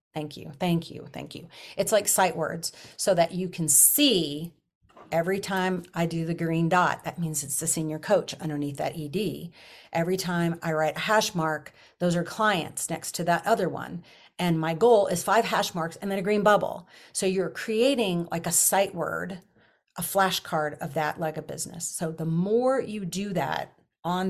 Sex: female